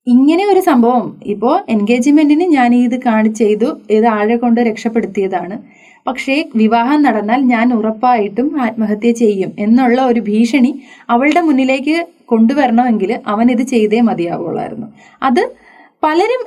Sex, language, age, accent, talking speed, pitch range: female, Malayalam, 20-39, native, 115 wpm, 235-300 Hz